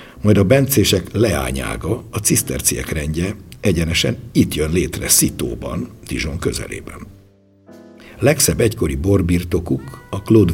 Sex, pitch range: male, 75-100 Hz